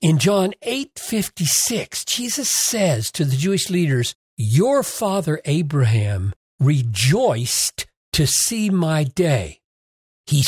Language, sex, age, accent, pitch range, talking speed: English, male, 60-79, American, 130-200 Hz, 105 wpm